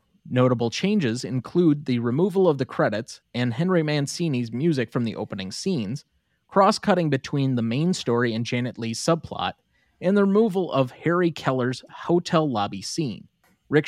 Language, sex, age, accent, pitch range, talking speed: English, male, 30-49, American, 120-165 Hz, 150 wpm